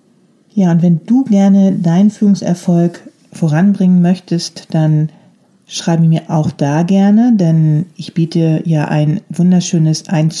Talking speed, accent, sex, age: 125 wpm, German, female, 40-59